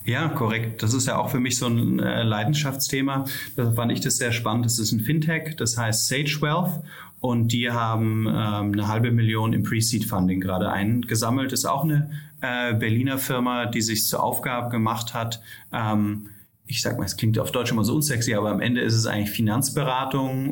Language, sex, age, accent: German, male, 30-49, German